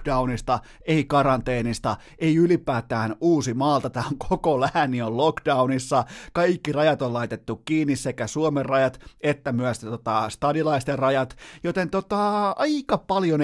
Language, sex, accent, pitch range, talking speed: Finnish, male, native, 120-150 Hz, 130 wpm